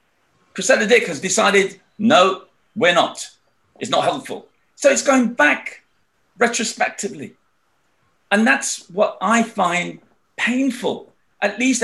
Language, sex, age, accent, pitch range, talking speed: English, male, 50-69, British, 170-230 Hz, 115 wpm